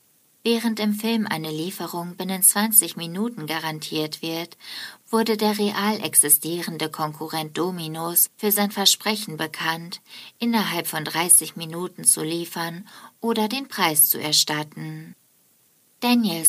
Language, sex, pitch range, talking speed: German, female, 160-210 Hz, 115 wpm